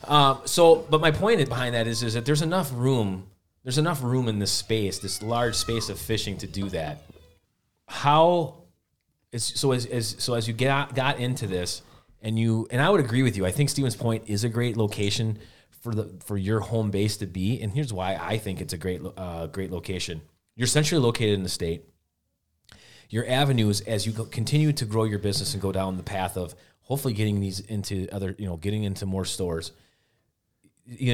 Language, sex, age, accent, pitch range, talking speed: English, male, 30-49, American, 95-120 Hz, 205 wpm